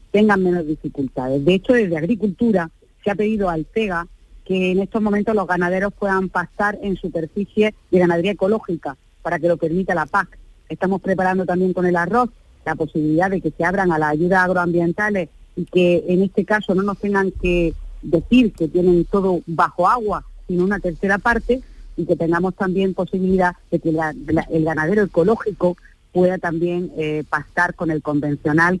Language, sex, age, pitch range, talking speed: Spanish, female, 40-59, 160-195 Hz, 175 wpm